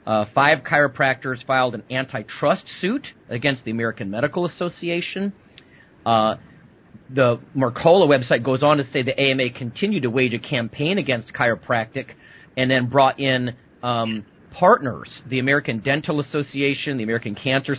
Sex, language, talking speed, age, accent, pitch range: male, English, 140 wpm, 40-59, American, 120-140 Hz